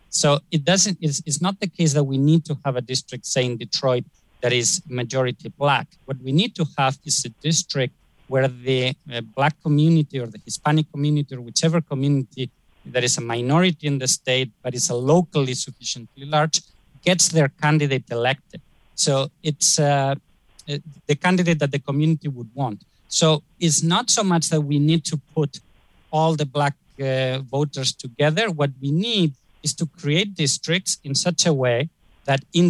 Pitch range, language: 130-160 Hz, English